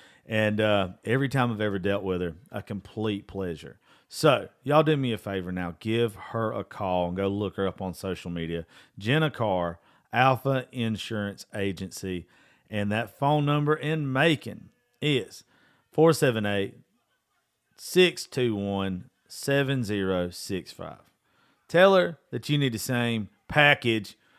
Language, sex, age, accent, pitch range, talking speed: English, male, 40-59, American, 105-145 Hz, 130 wpm